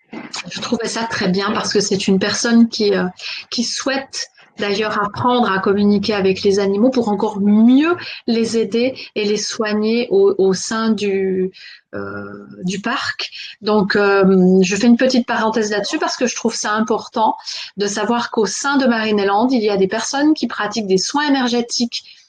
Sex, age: female, 30-49